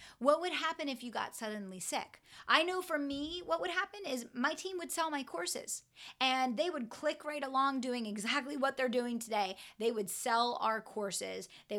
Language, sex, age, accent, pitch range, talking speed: English, female, 30-49, American, 210-265 Hz, 205 wpm